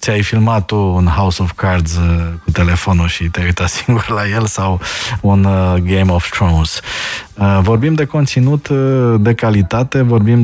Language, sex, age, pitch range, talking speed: Romanian, male, 20-39, 90-110 Hz, 150 wpm